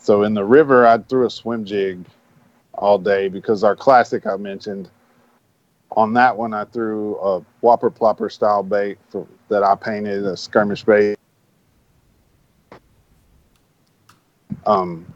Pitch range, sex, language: 95-110 Hz, male, English